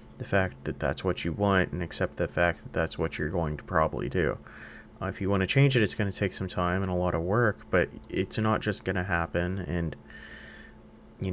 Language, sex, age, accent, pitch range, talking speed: English, male, 20-39, American, 85-105 Hz, 245 wpm